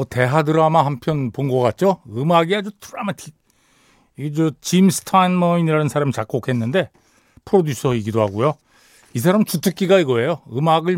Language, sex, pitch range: Korean, male, 125-190 Hz